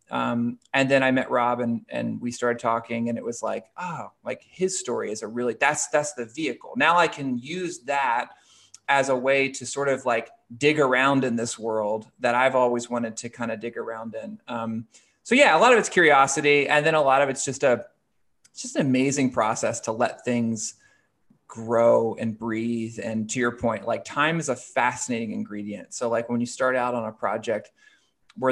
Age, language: 20-39, English